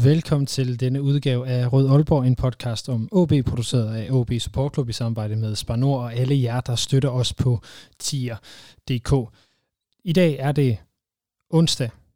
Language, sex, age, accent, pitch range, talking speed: Danish, male, 20-39, native, 120-145 Hz, 165 wpm